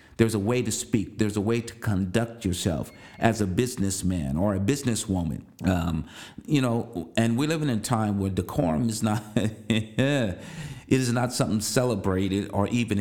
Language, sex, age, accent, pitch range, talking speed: English, male, 50-69, American, 95-115 Hz, 165 wpm